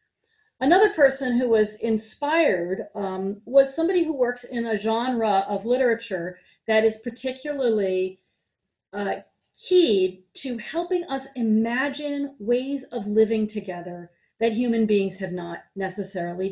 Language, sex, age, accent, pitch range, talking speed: English, female, 40-59, American, 195-280 Hz, 125 wpm